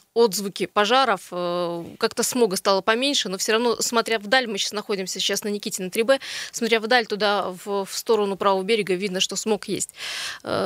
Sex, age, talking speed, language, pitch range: female, 20-39, 175 wpm, Russian, 205-250 Hz